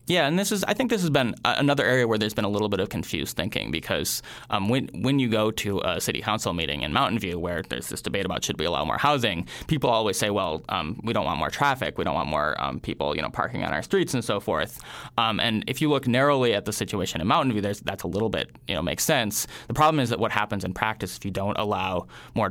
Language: English